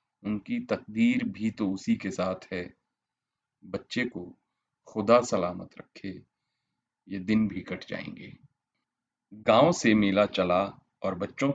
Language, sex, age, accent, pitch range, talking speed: Hindi, male, 40-59, native, 95-115 Hz, 125 wpm